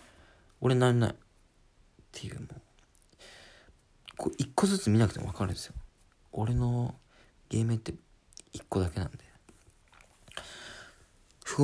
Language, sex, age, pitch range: Japanese, male, 40-59, 95-140 Hz